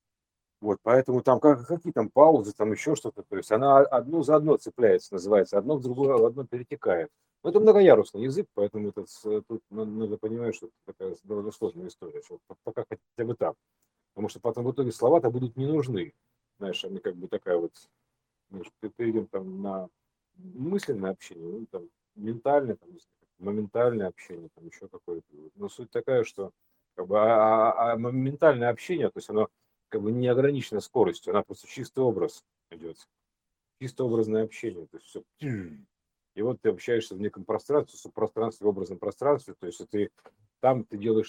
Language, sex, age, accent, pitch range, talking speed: Russian, male, 40-59, native, 105-155 Hz, 175 wpm